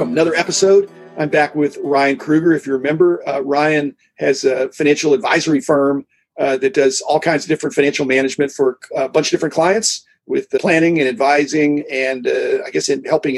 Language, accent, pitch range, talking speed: English, American, 140-180 Hz, 195 wpm